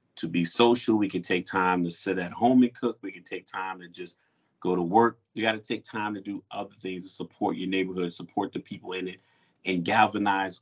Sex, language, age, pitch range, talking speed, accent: male, English, 30-49, 95-115 Hz, 235 wpm, American